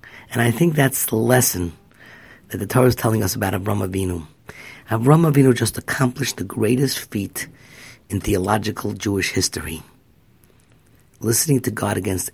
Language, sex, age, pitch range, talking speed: English, male, 50-69, 100-125 Hz, 145 wpm